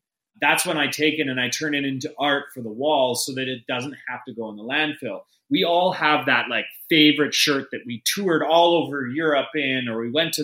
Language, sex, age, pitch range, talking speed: English, male, 30-49, 135-170 Hz, 240 wpm